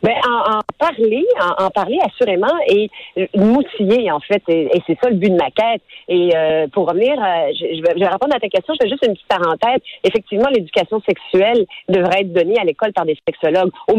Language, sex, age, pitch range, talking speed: French, female, 40-59, 175-265 Hz, 220 wpm